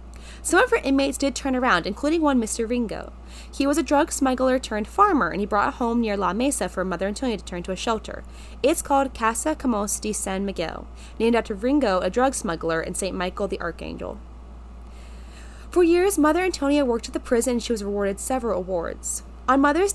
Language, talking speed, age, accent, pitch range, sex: English, 200 wpm, 20-39, American, 185-275 Hz, female